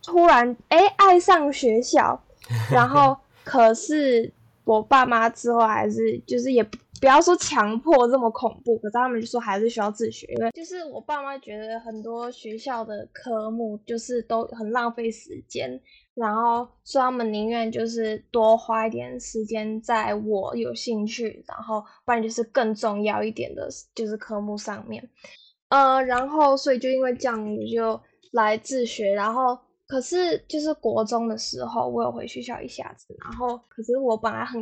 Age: 10-29